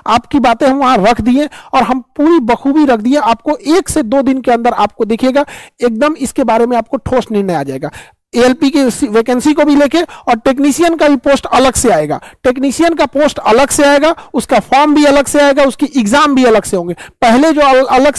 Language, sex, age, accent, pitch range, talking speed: Hindi, male, 50-69, native, 235-285 Hz, 220 wpm